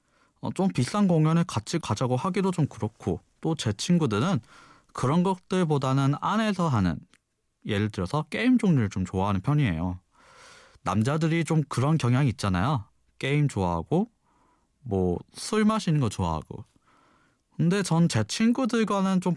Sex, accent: male, native